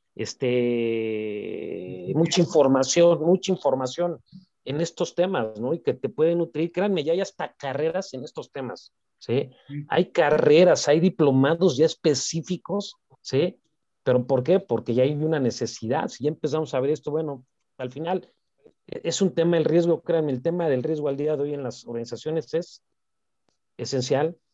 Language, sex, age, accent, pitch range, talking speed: Spanish, male, 40-59, Mexican, 140-180 Hz, 160 wpm